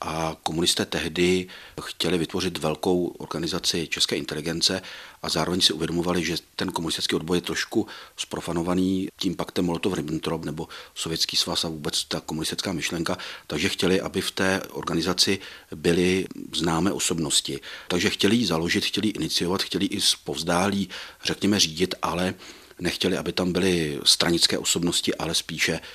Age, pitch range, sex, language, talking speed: 40-59, 80-90 Hz, male, Czech, 135 wpm